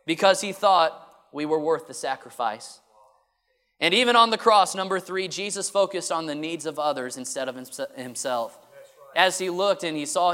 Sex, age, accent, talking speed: male, 20-39, American, 180 wpm